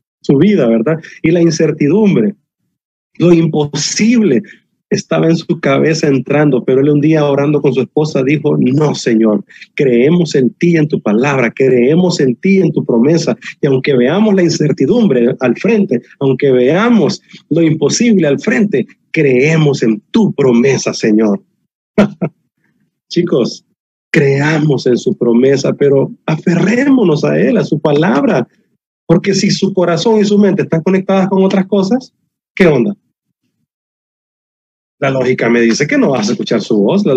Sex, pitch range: male, 135-190 Hz